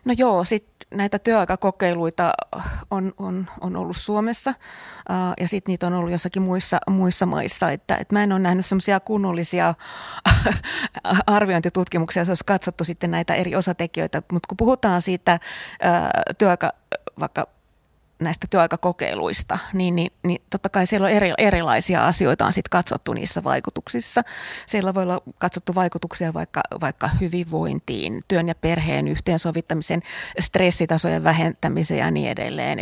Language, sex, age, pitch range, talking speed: Finnish, female, 30-49, 165-190 Hz, 135 wpm